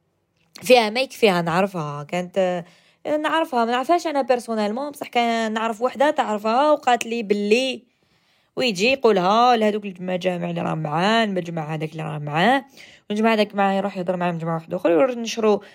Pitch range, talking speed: 180-235 Hz, 145 wpm